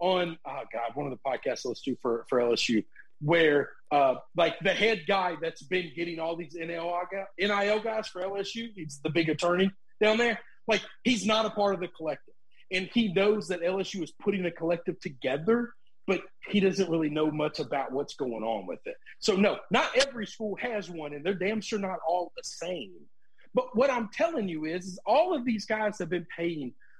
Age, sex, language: 40-59, male, English